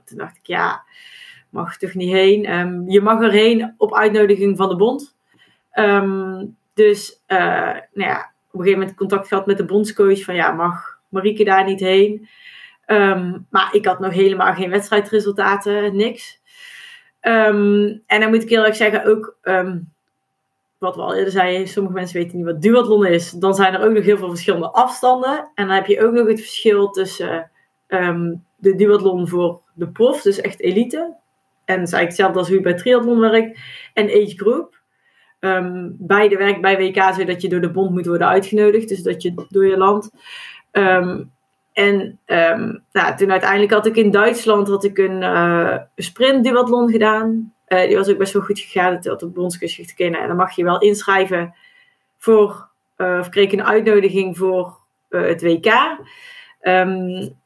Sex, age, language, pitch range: female, 30-49, Dutch, 185-215 Hz